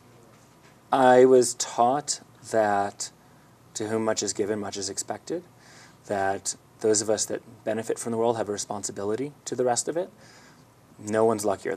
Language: English